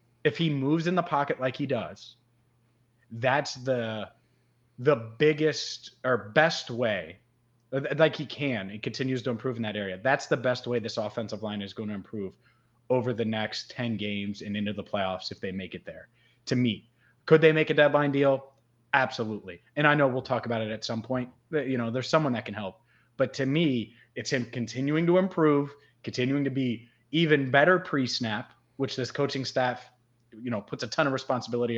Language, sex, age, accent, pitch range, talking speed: English, male, 30-49, American, 115-135 Hz, 195 wpm